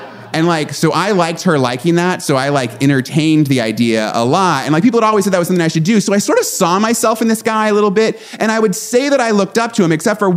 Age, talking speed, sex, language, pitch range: 30-49, 300 wpm, male, English, 125-185 Hz